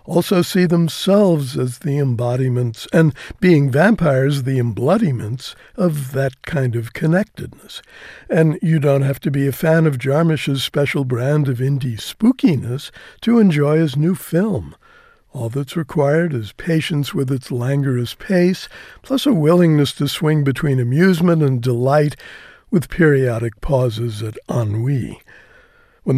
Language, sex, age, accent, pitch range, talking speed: English, male, 60-79, American, 130-175 Hz, 140 wpm